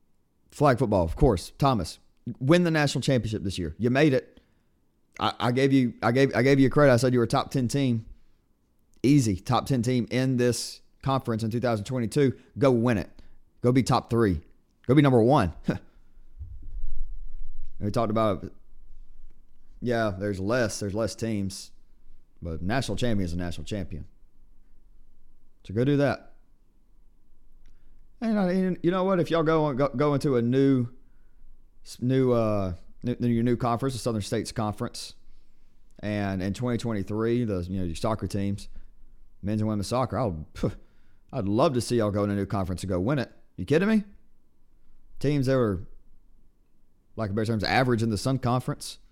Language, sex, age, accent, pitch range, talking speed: English, male, 30-49, American, 95-130 Hz, 175 wpm